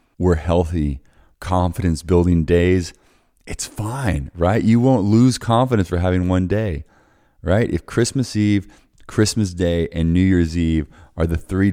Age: 30-49